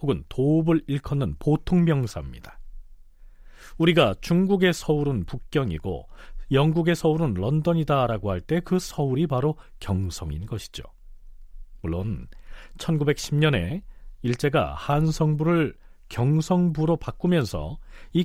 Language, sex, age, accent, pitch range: Korean, male, 40-59, native, 100-165 Hz